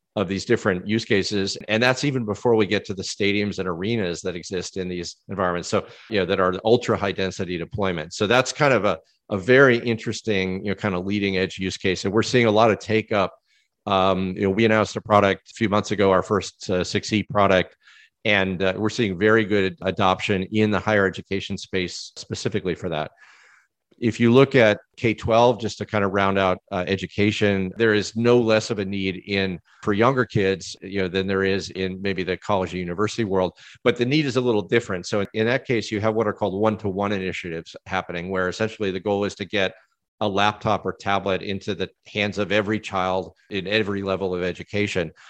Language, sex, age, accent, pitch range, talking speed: English, male, 40-59, American, 95-110 Hz, 220 wpm